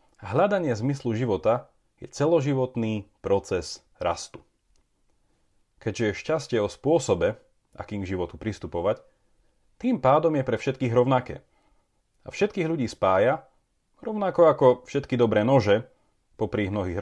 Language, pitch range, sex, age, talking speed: Slovak, 100-145 Hz, male, 30-49, 115 wpm